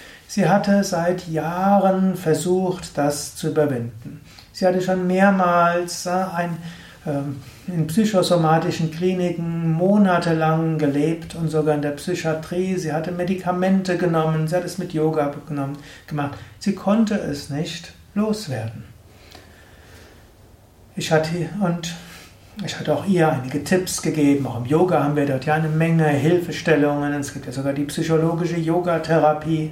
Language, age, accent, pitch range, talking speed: German, 60-79, German, 145-180 Hz, 130 wpm